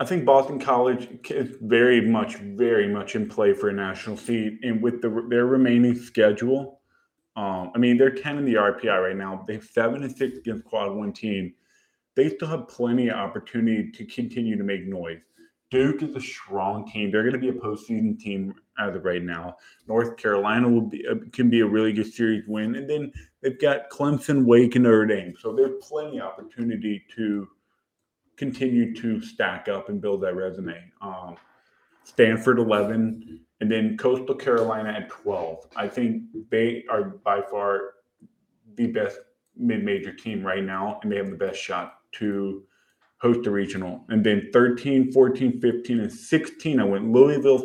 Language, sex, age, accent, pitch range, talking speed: English, male, 20-39, American, 105-135 Hz, 175 wpm